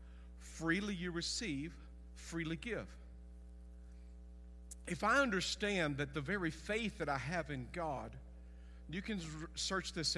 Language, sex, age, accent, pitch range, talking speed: English, male, 50-69, American, 145-235 Hz, 125 wpm